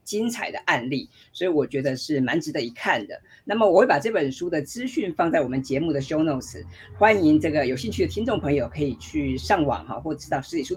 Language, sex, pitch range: Chinese, female, 140-225 Hz